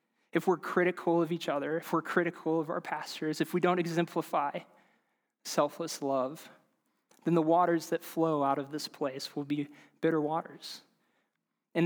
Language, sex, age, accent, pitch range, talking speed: English, male, 20-39, American, 150-175 Hz, 160 wpm